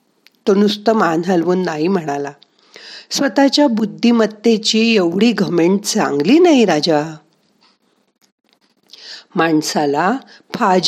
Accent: native